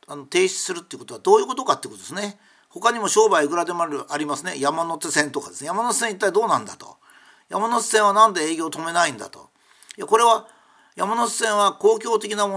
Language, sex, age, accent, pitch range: Japanese, male, 50-69, native, 160-235 Hz